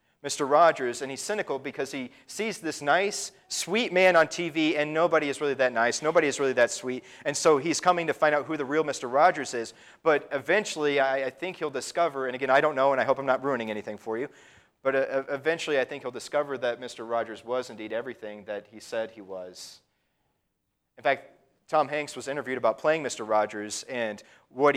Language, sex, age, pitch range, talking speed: English, male, 30-49, 120-150 Hz, 210 wpm